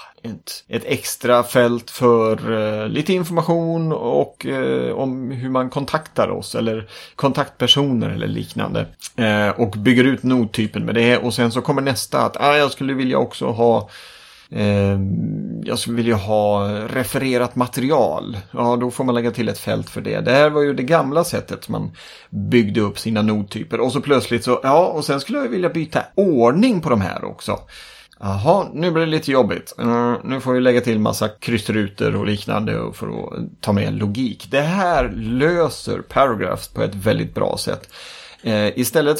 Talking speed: 175 wpm